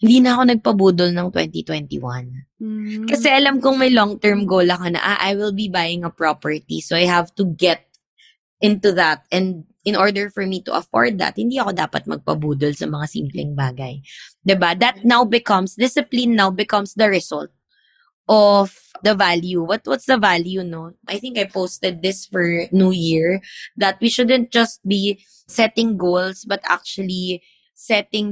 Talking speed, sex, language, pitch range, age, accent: 165 wpm, female, English, 175-215 Hz, 20-39, Filipino